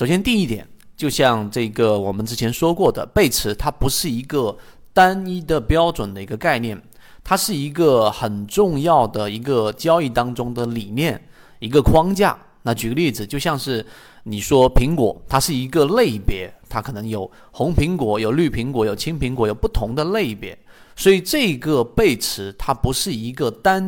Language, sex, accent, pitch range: Chinese, male, native, 110-150 Hz